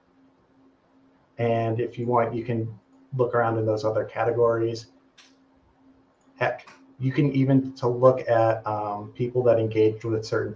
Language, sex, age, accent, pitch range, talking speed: English, male, 30-49, American, 110-130 Hz, 140 wpm